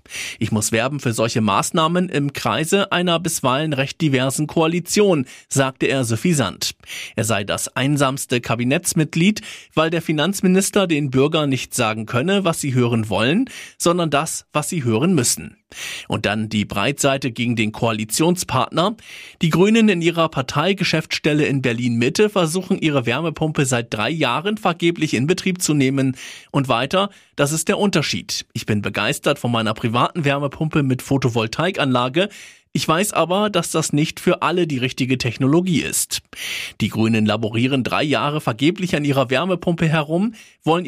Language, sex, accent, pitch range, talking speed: German, male, German, 125-170 Hz, 150 wpm